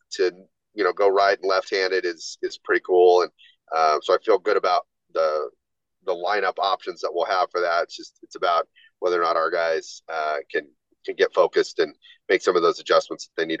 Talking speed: 225 wpm